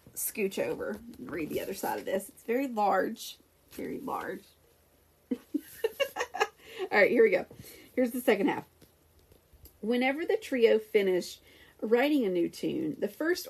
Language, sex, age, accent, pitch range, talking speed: English, female, 40-59, American, 205-310 Hz, 145 wpm